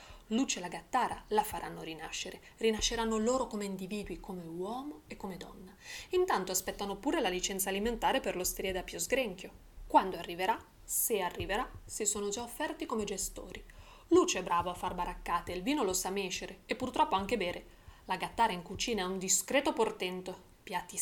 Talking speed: 175 wpm